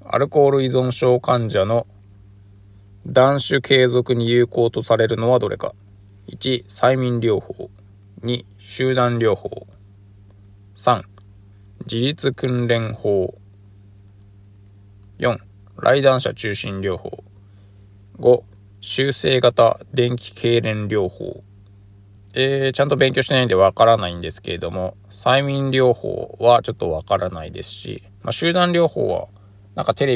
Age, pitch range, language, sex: 20-39, 100-120 Hz, Japanese, male